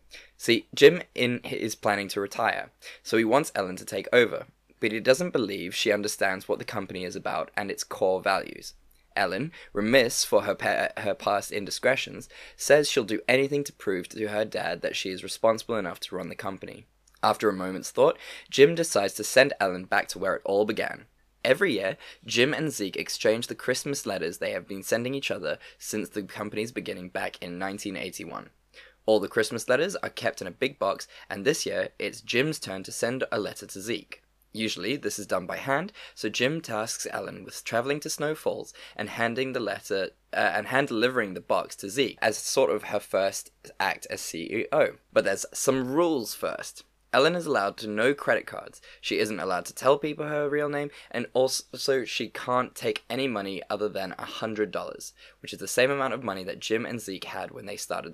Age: 10-29